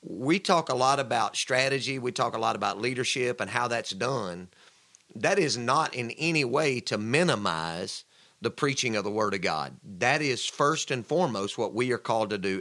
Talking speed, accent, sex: 200 wpm, American, male